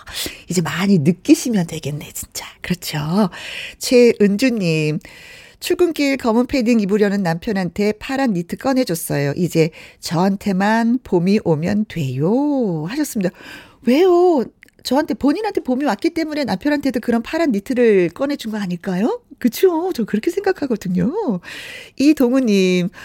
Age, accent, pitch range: 40-59, native, 180-280 Hz